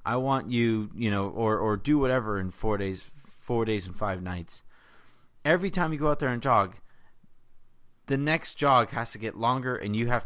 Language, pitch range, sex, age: English, 105-135 Hz, male, 30-49